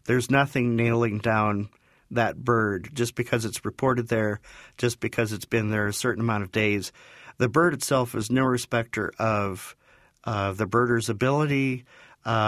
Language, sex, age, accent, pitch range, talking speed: English, male, 50-69, American, 110-125 Hz, 160 wpm